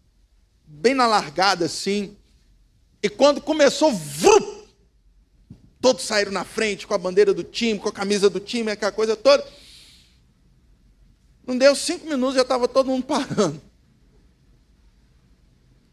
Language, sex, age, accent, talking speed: Portuguese, male, 50-69, Brazilian, 125 wpm